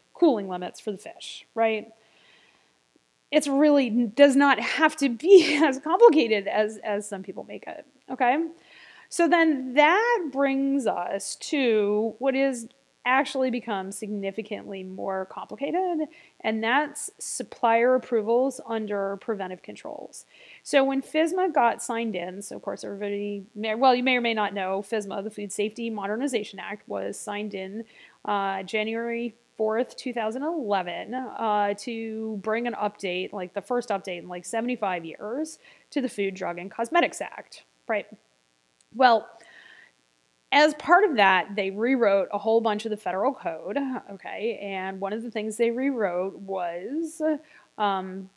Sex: female